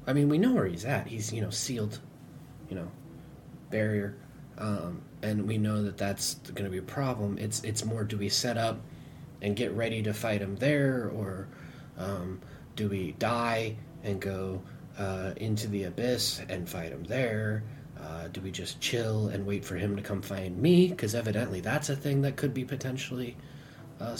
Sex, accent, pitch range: male, American, 110-145 Hz